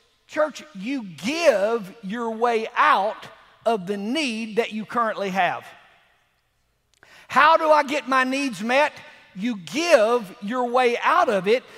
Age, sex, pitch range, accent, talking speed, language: 50-69, male, 195-265 Hz, American, 140 wpm, English